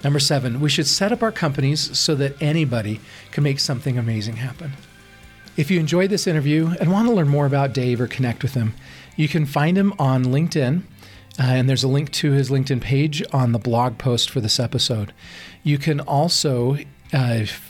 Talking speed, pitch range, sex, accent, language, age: 195 wpm, 120-155 Hz, male, American, English, 40-59